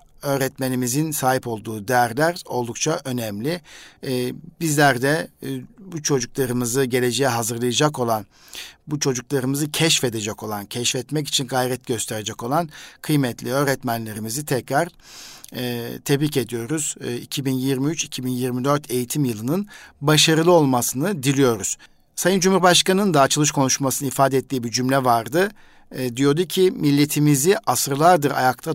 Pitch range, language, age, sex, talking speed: 120-150 Hz, Turkish, 50-69, male, 100 wpm